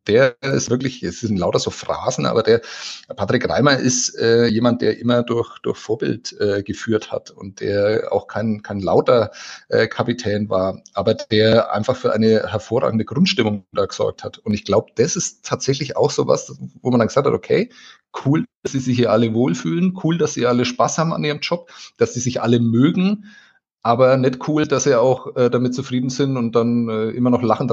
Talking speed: 205 wpm